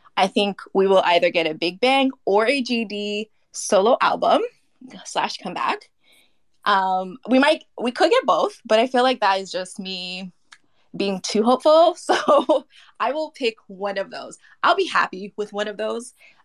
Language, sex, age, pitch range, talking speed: English, female, 20-39, 190-255 Hz, 175 wpm